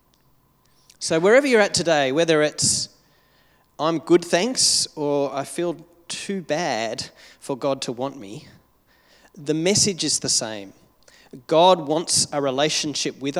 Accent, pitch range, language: Australian, 130-160 Hz, English